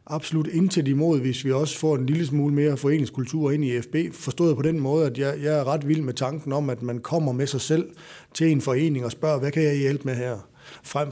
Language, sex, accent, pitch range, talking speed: Danish, male, native, 130-160 Hz, 250 wpm